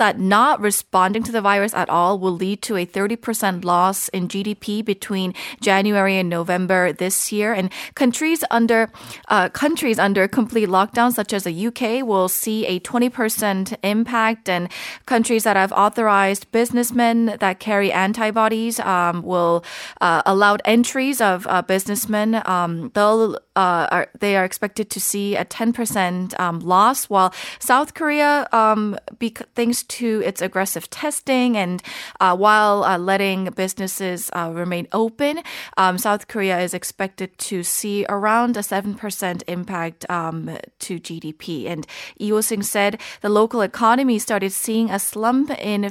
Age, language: 30-49, Korean